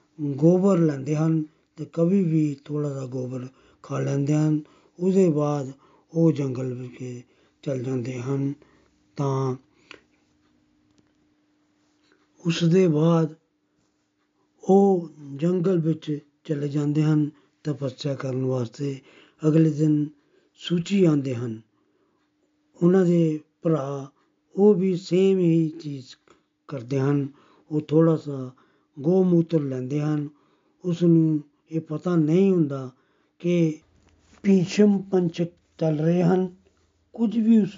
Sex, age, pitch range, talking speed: male, 50-69, 135-165 Hz, 110 wpm